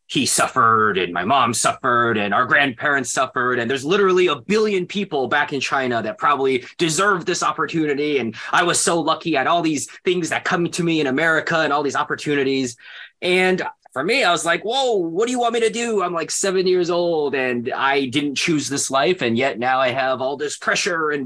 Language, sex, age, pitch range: Chinese, male, 20-39, 120-175 Hz